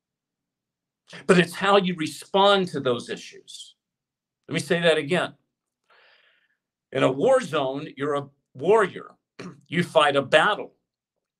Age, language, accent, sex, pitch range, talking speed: 50-69, English, American, male, 155-200 Hz, 125 wpm